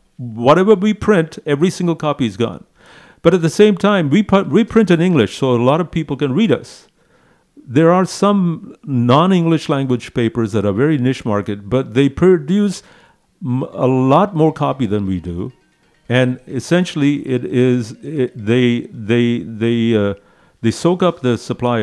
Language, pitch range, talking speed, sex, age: English, 105-145 Hz, 175 wpm, male, 50-69